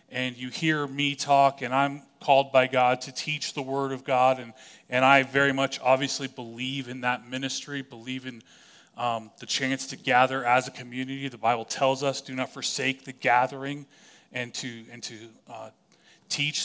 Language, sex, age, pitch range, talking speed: English, male, 30-49, 125-145 Hz, 185 wpm